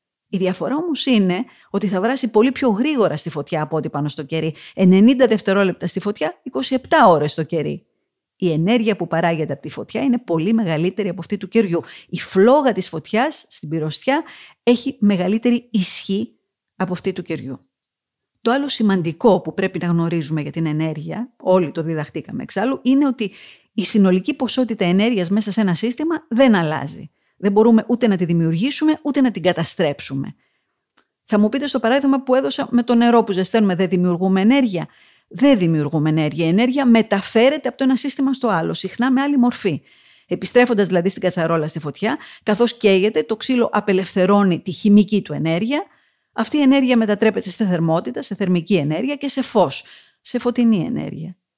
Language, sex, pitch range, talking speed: Greek, female, 175-245 Hz, 175 wpm